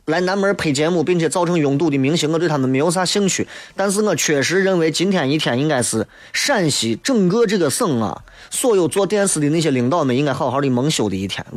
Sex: male